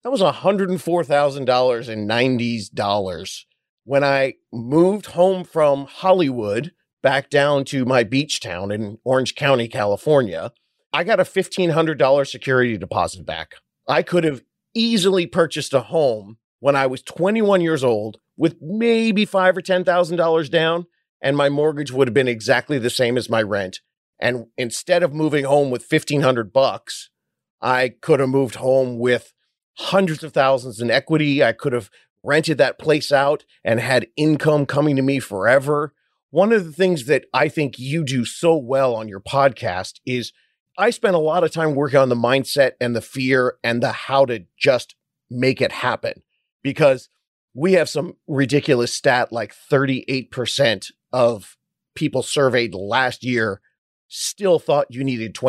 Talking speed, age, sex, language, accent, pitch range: 155 wpm, 40-59, male, English, American, 125-160 Hz